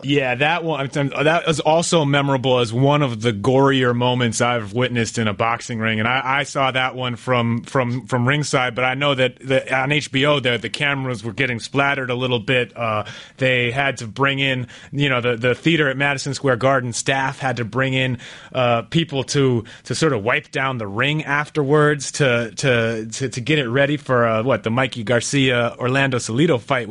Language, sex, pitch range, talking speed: English, male, 125-150 Hz, 205 wpm